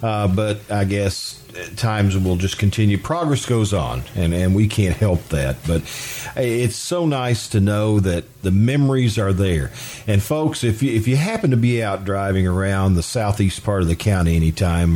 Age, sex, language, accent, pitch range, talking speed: 50-69, male, English, American, 95-120 Hz, 190 wpm